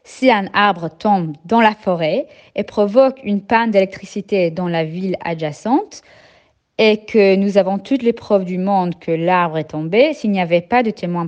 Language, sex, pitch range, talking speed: French, female, 160-215 Hz, 185 wpm